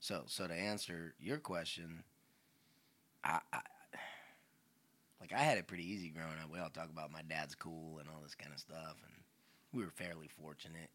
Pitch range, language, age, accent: 80-95 Hz, English, 30-49, American